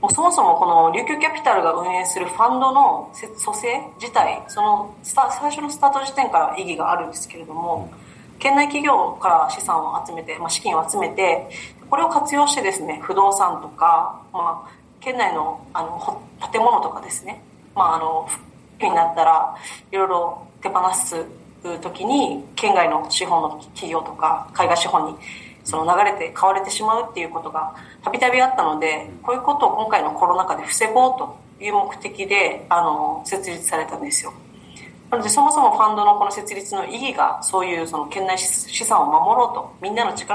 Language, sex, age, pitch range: Japanese, female, 30-49, 175-280 Hz